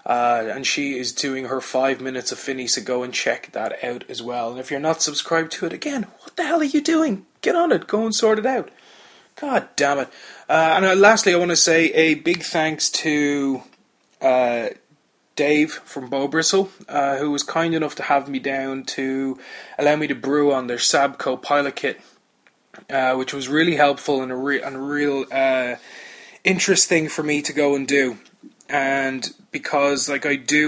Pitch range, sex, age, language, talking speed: 120-145 Hz, male, 20-39, English, 195 wpm